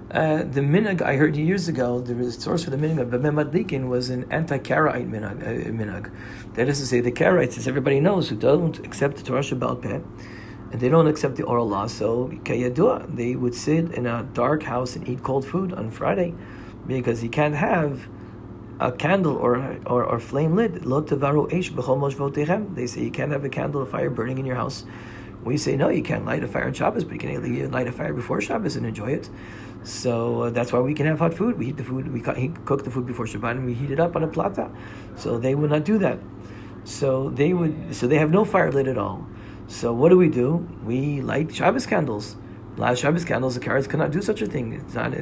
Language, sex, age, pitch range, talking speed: English, male, 40-59, 120-165 Hz, 220 wpm